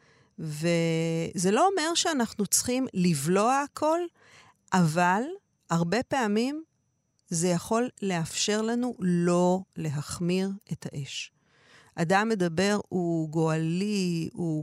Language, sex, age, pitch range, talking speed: Hebrew, female, 50-69, 160-210 Hz, 95 wpm